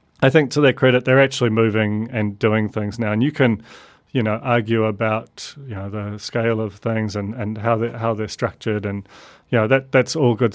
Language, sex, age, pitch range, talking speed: English, male, 30-49, 115-130 Hz, 220 wpm